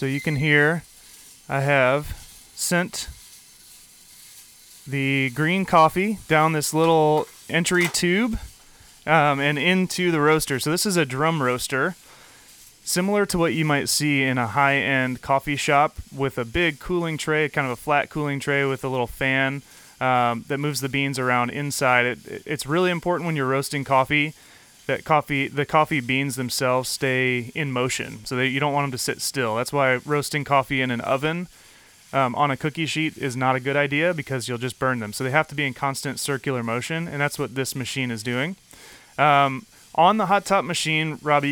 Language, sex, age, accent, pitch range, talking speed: English, male, 30-49, American, 130-155 Hz, 185 wpm